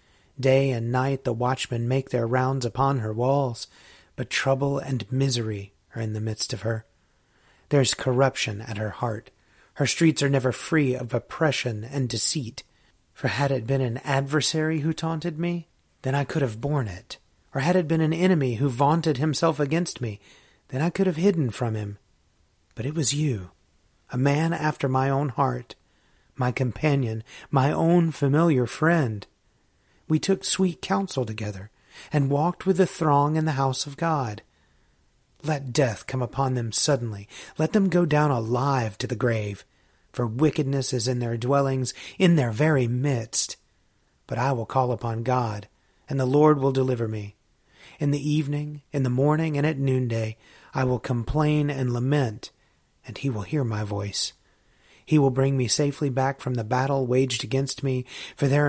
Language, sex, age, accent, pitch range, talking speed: English, male, 30-49, American, 115-145 Hz, 175 wpm